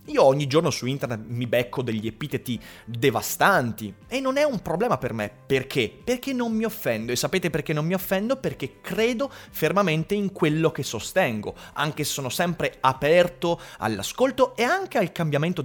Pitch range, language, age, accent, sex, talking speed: 125-195 Hz, Italian, 30-49, native, male, 175 wpm